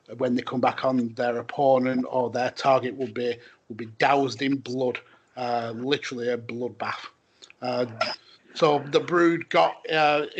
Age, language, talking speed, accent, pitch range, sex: 40-59, English, 155 wpm, British, 130-150 Hz, male